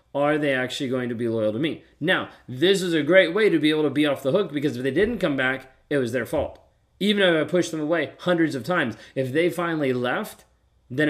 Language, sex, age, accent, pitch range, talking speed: English, male, 30-49, American, 130-165 Hz, 255 wpm